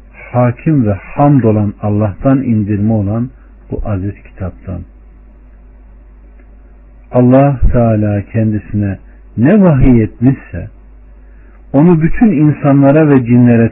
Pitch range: 95-130 Hz